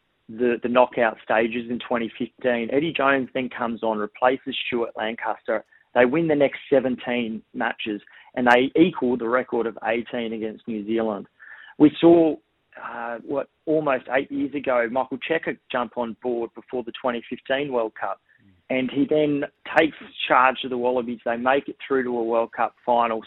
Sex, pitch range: male, 115-135 Hz